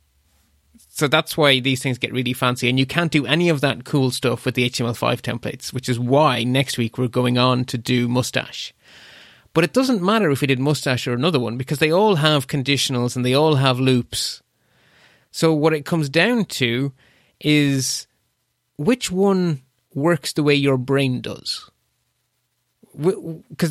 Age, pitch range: 30-49, 125-155 Hz